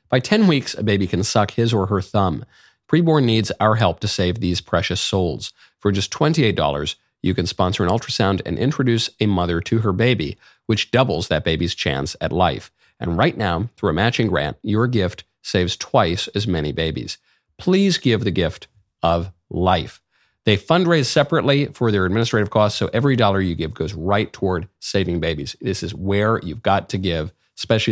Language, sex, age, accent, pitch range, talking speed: English, male, 50-69, American, 90-120 Hz, 185 wpm